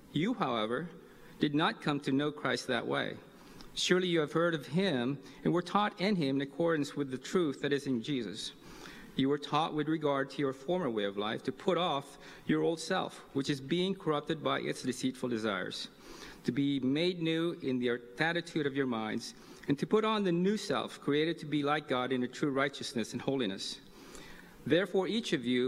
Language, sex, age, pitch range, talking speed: English, male, 50-69, 135-180 Hz, 205 wpm